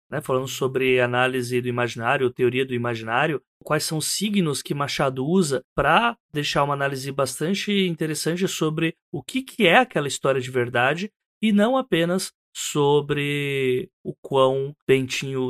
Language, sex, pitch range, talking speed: Portuguese, male, 130-185 Hz, 145 wpm